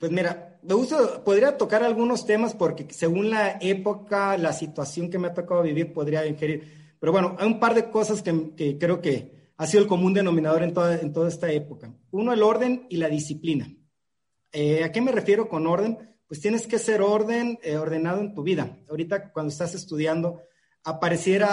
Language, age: Spanish, 40-59